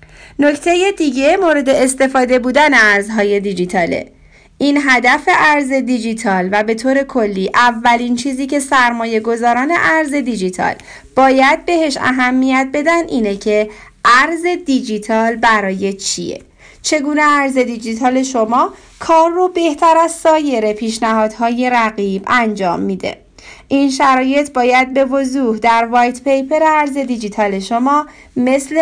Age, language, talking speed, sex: 40-59, Persian, 120 wpm, female